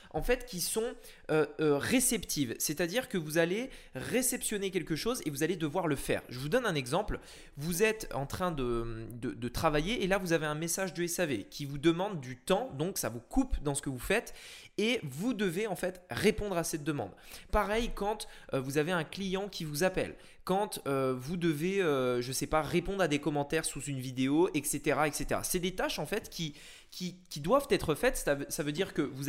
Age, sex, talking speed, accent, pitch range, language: 20-39, male, 220 wpm, French, 145-200 Hz, French